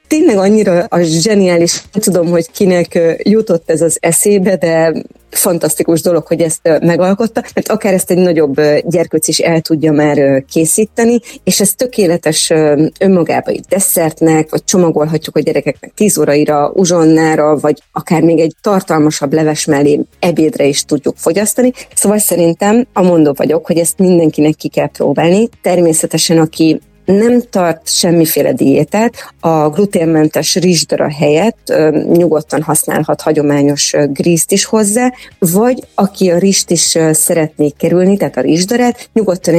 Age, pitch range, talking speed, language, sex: 30-49, 155-195 Hz, 140 wpm, Hungarian, female